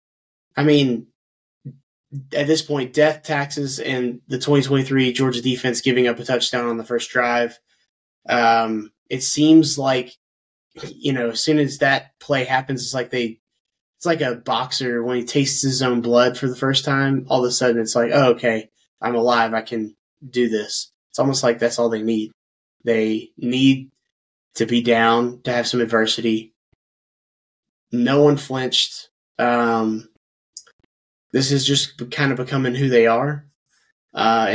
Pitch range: 120-135 Hz